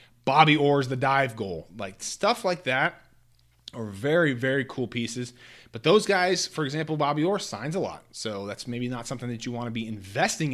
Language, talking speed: English, 200 wpm